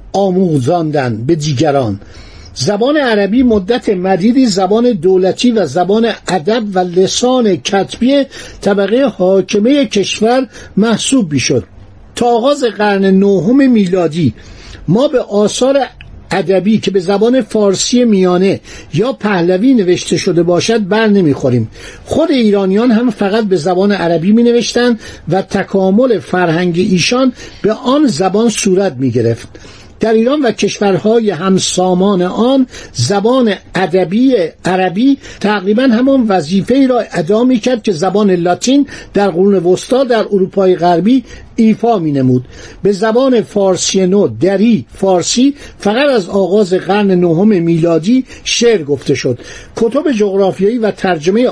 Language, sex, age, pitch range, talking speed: Persian, male, 60-79, 180-230 Hz, 120 wpm